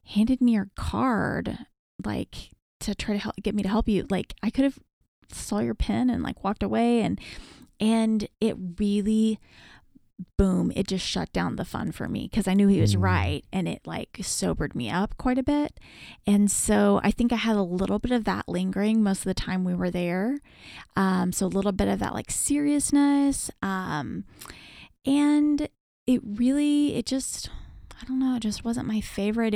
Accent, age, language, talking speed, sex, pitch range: American, 20-39, English, 195 wpm, female, 180-225 Hz